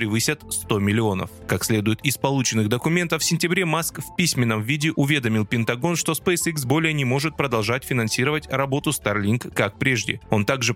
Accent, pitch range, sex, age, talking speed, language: native, 110-155 Hz, male, 20-39, 160 wpm, Russian